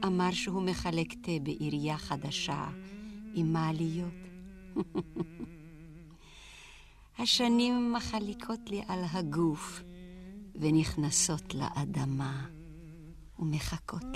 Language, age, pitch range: Hebrew, 50-69, 175-230 Hz